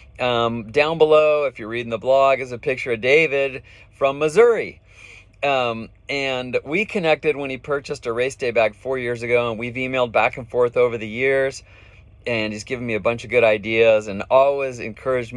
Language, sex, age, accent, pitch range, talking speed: English, male, 30-49, American, 105-140 Hz, 195 wpm